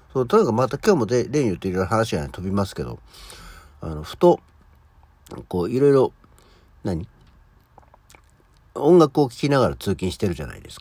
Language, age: Japanese, 60-79